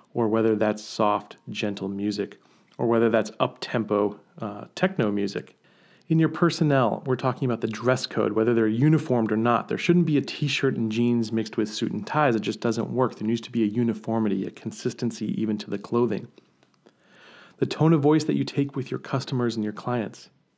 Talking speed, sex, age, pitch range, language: 195 wpm, male, 40-59, 110-140 Hz, English